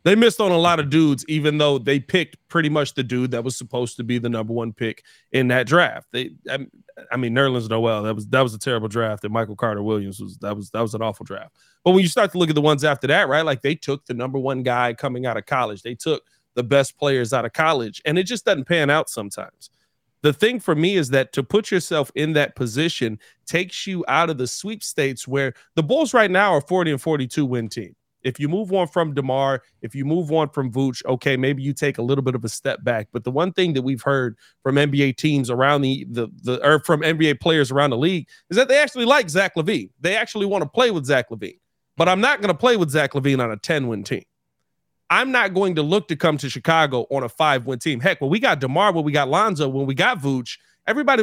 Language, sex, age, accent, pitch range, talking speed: English, male, 30-49, American, 125-170 Hz, 255 wpm